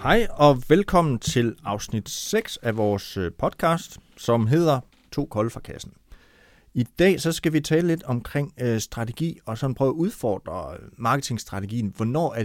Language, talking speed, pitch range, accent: Danish, 160 wpm, 105-135 Hz, native